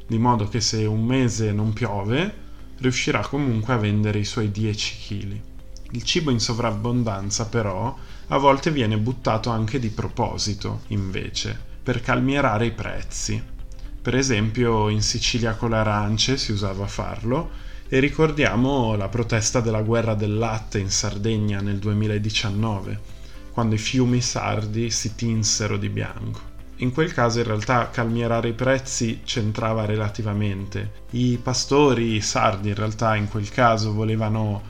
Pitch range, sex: 105-125 Hz, male